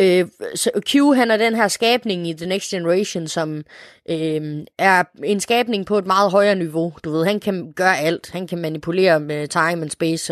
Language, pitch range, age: Danish, 165-210 Hz, 20-39